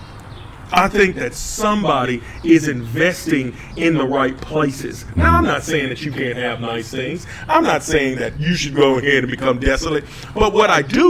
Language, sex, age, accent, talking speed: English, male, 40-59, American, 190 wpm